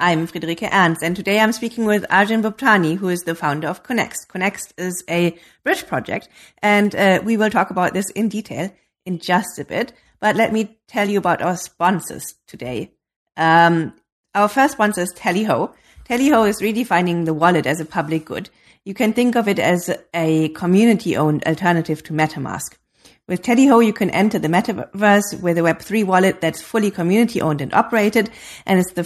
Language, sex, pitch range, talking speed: English, female, 165-210 Hz, 180 wpm